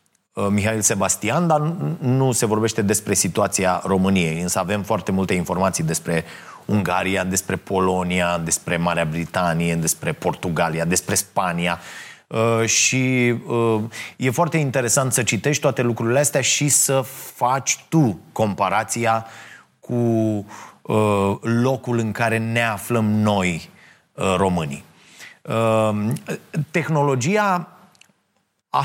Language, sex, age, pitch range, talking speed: Romanian, male, 30-49, 100-150 Hz, 100 wpm